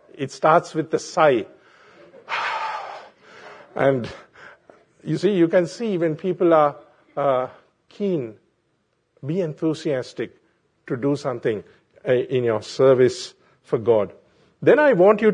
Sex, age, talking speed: male, 50-69, 115 wpm